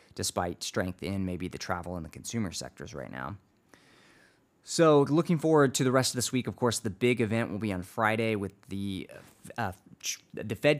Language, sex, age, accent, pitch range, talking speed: English, male, 20-39, American, 95-110 Hz, 195 wpm